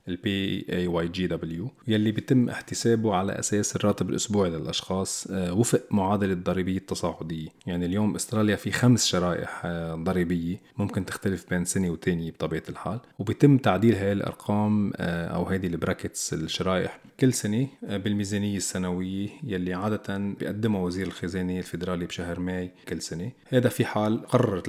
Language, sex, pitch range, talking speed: Arabic, male, 90-115 Hz, 140 wpm